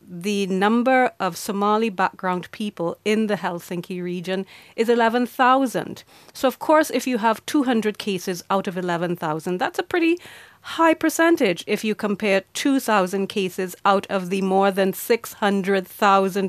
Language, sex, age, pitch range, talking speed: Finnish, female, 30-49, 180-235 Hz, 140 wpm